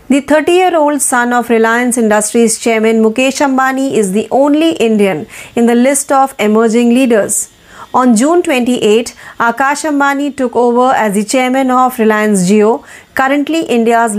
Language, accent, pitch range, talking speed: Marathi, native, 225-275 Hz, 150 wpm